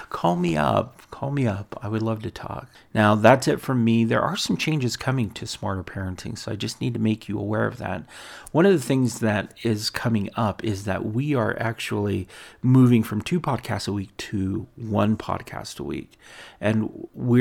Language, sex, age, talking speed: English, male, 40-59, 205 wpm